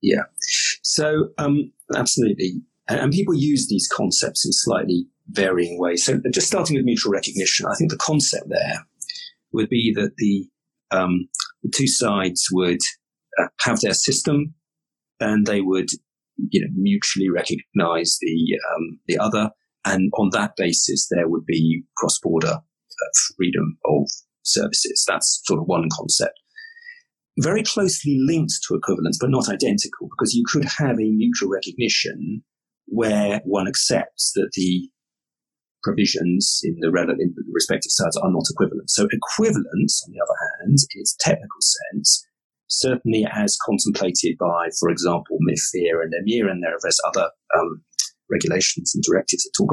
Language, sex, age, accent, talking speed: English, male, 40-59, British, 150 wpm